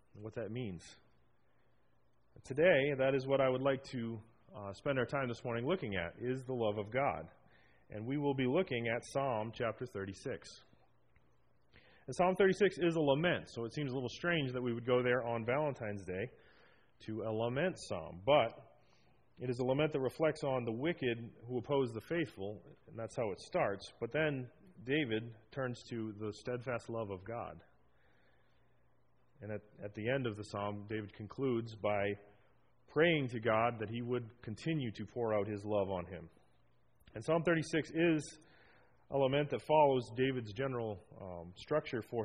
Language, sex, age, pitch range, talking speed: English, male, 30-49, 105-135 Hz, 175 wpm